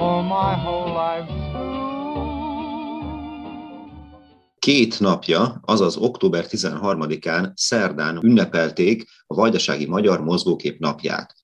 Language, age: Hungarian, 30-49